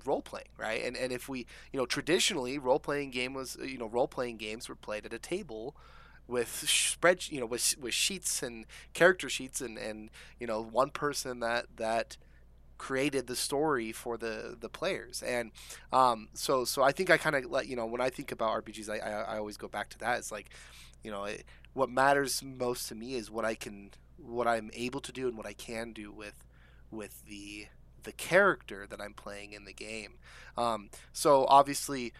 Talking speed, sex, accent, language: 210 wpm, male, American, English